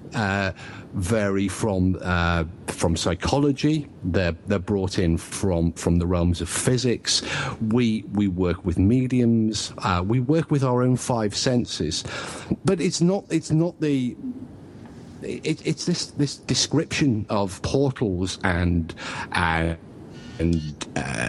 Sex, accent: male, British